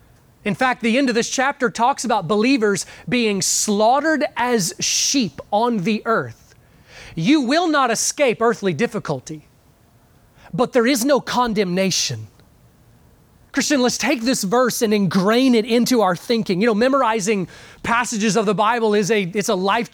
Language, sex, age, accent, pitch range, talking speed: English, male, 30-49, American, 205-255 Hz, 155 wpm